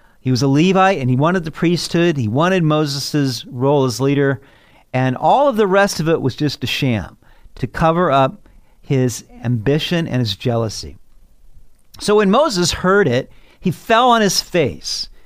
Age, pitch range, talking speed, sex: 50-69, 130-190 Hz, 175 wpm, male